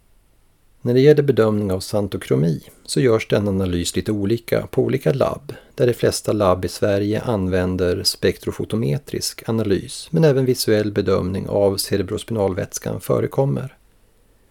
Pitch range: 95-115 Hz